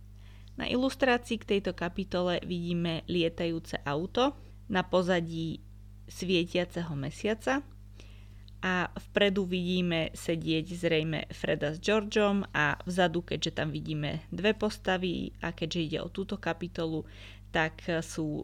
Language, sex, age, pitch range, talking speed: Slovak, female, 20-39, 155-185 Hz, 115 wpm